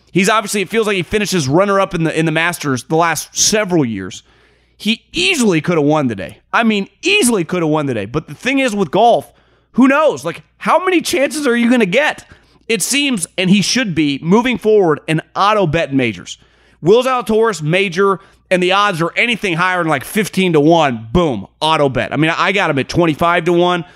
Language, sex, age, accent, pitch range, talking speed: English, male, 30-49, American, 160-210 Hz, 220 wpm